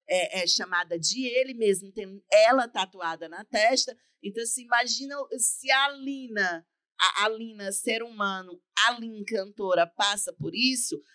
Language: Portuguese